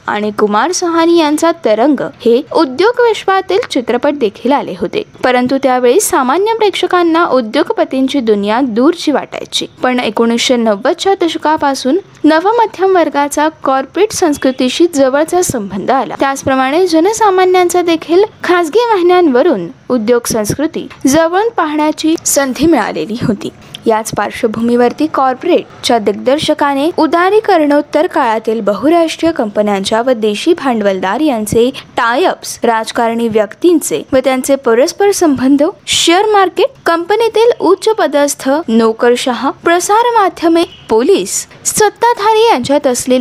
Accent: native